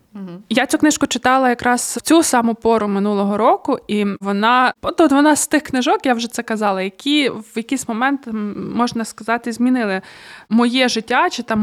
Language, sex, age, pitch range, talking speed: Ukrainian, female, 20-39, 215-260 Hz, 170 wpm